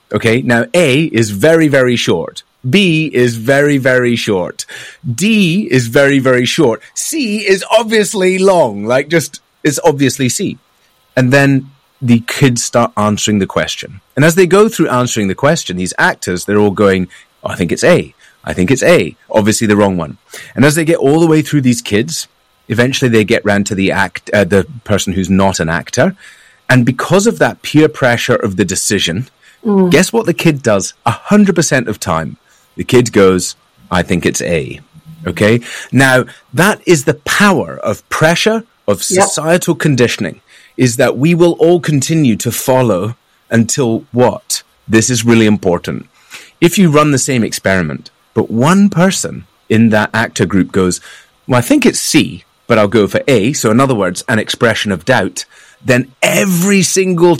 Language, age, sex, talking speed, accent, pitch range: English, 30-49, male, 175 wpm, British, 110-165 Hz